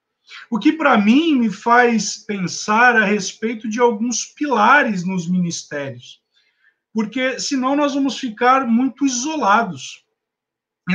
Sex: male